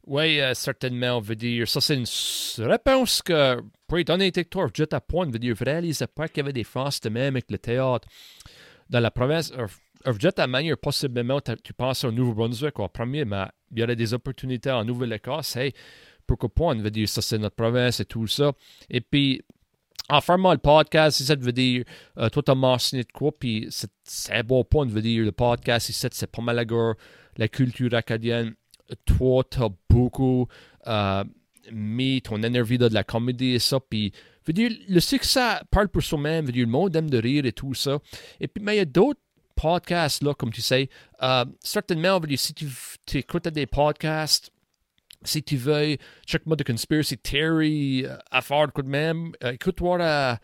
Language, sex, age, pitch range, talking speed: French, male, 40-59, 120-150 Hz, 195 wpm